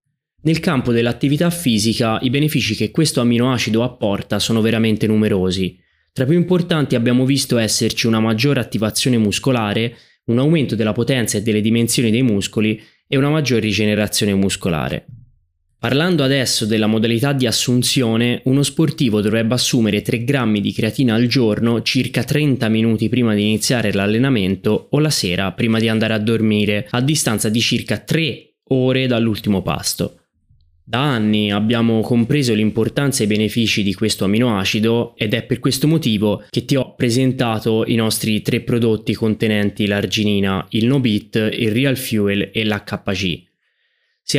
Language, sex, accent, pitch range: Italian, male, native, 105-130 Hz